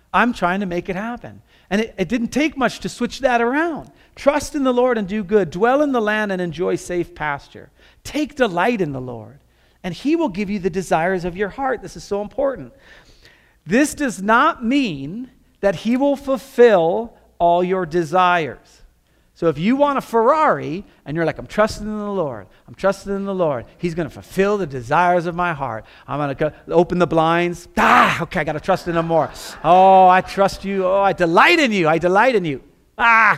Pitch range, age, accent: 175-245 Hz, 40-59, American